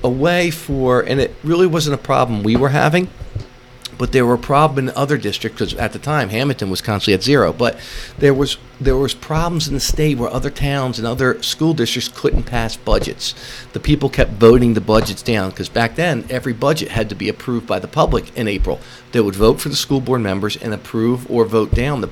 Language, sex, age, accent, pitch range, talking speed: English, male, 40-59, American, 115-145 Hz, 225 wpm